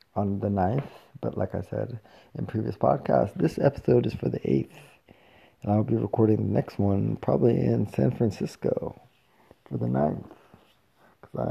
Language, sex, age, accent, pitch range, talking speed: English, male, 20-39, American, 105-125 Hz, 160 wpm